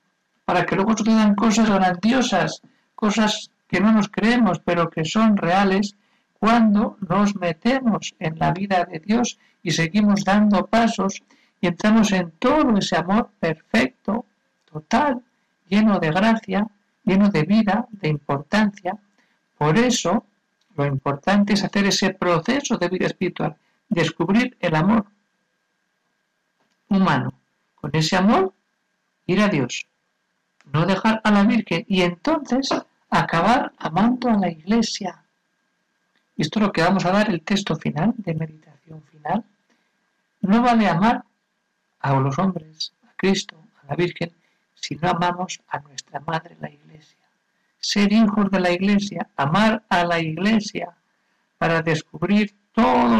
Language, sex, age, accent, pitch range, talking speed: Spanish, male, 60-79, Spanish, 170-220 Hz, 135 wpm